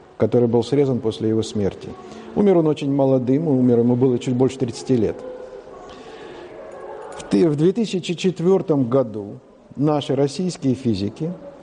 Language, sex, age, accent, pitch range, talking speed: Russian, male, 50-69, native, 120-165 Hz, 115 wpm